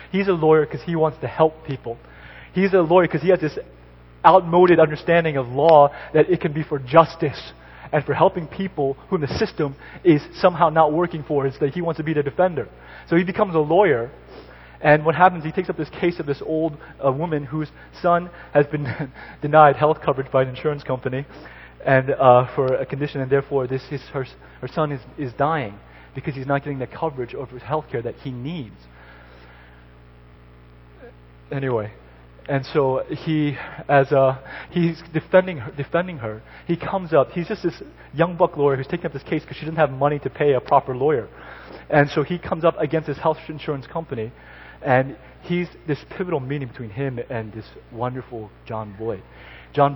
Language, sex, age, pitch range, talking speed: English, male, 20-39, 125-160 Hz, 195 wpm